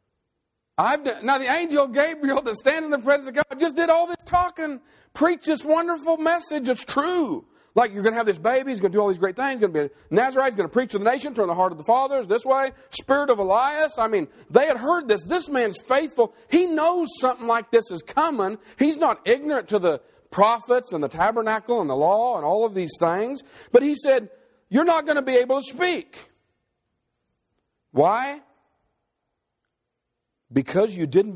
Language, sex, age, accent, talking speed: English, male, 50-69, American, 210 wpm